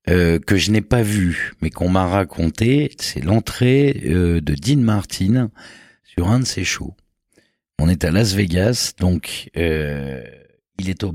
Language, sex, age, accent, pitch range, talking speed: French, male, 50-69, French, 85-110 Hz, 160 wpm